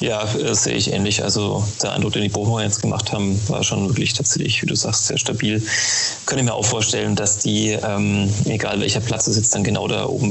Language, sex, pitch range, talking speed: German, male, 105-120 Hz, 225 wpm